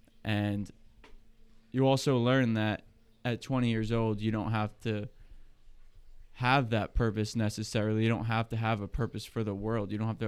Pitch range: 105-120 Hz